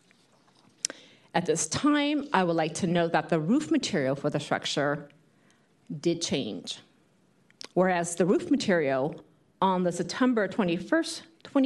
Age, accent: 40-59, American